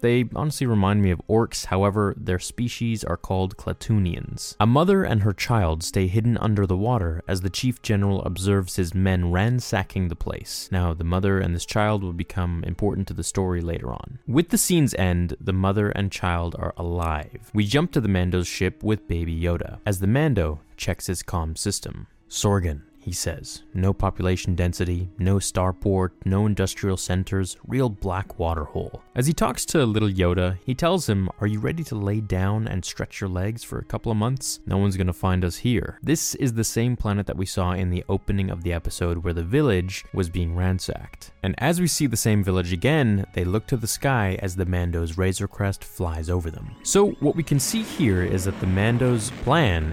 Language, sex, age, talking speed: English, male, 20-39, 205 wpm